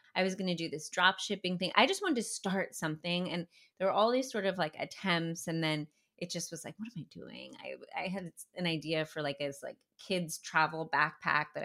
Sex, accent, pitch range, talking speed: female, American, 155-195 Hz, 235 wpm